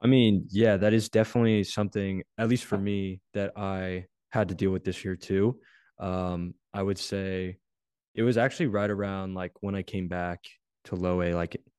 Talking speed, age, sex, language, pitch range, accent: 190 wpm, 20-39, male, English, 95-110 Hz, American